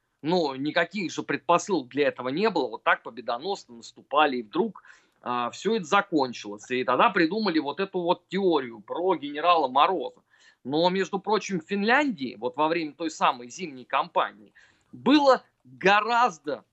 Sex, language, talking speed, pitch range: male, Russian, 150 wpm, 145-190 Hz